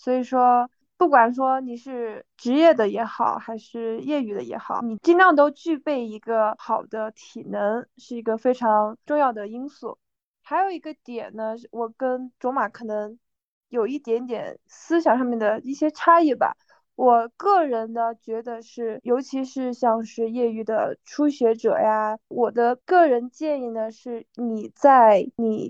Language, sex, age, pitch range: Chinese, female, 20-39, 225-285 Hz